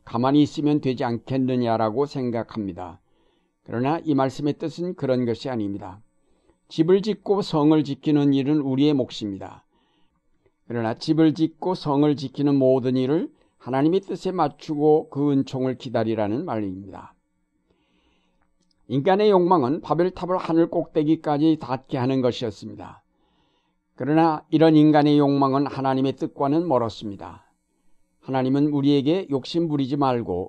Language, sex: Korean, male